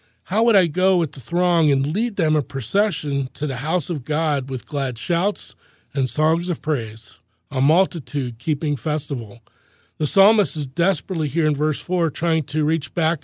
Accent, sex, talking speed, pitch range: American, male, 180 wpm, 135-170 Hz